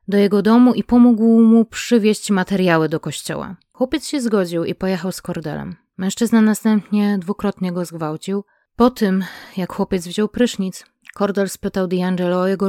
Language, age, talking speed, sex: Polish, 20-39, 155 wpm, female